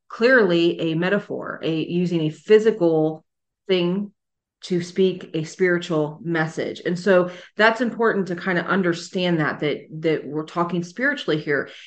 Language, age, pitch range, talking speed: English, 30-49, 160-205 Hz, 140 wpm